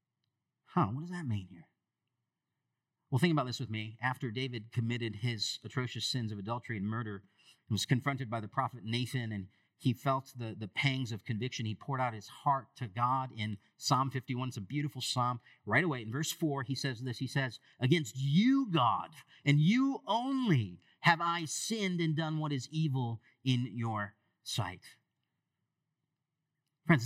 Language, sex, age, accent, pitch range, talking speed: English, male, 40-59, American, 120-160 Hz, 175 wpm